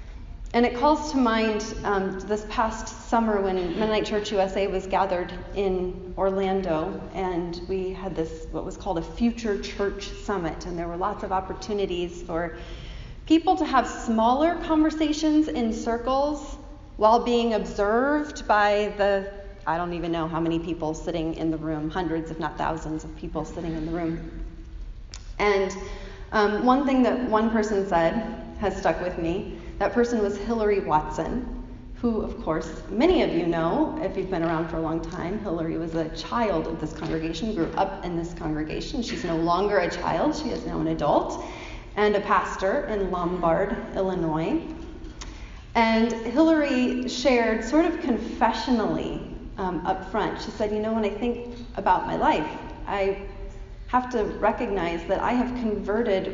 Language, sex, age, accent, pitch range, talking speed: English, female, 30-49, American, 170-230 Hz, 165 wpm